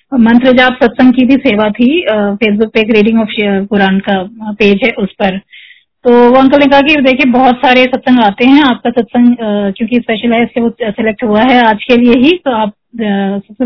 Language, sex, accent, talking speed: Hindi, female, native, 200 wpm